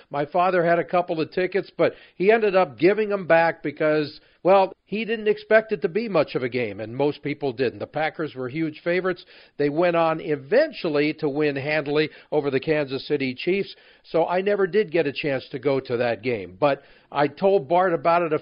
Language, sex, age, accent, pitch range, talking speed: English, male, 50-69, American, 145-180 Hz, 215 wpm